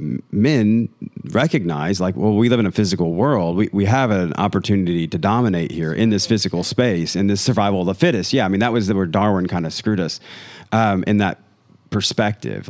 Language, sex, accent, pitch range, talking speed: English, male, American, 95-115 Hz, 205 wpm